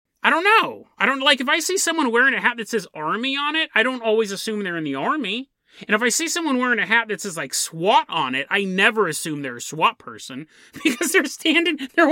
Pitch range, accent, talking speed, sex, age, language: 165-255 Hz, American, 255 wpm, male, 30-49, English